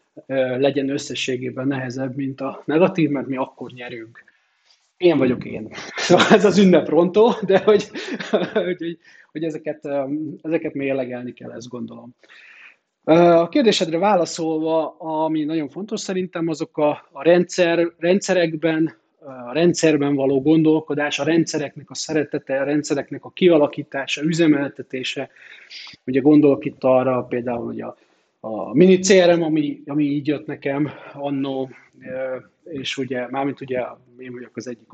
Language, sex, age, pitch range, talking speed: Hungarian, male, 30-49, 135-165 Hz, 125 wpm